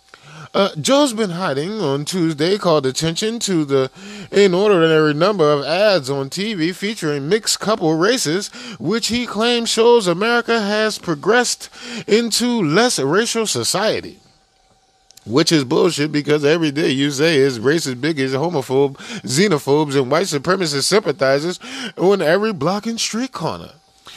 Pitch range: 155-215 Hz